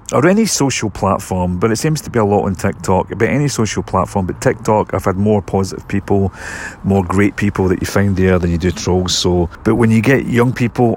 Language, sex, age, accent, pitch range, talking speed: English, male, 40-59, British, 95-110 Hz, 230 wpm